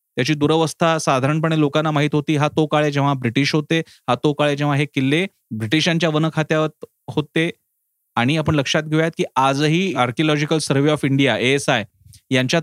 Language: Marathi